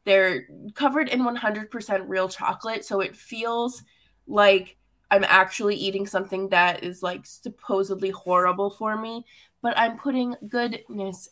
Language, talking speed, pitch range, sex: English, 135 wpm, 195-265 Hz, female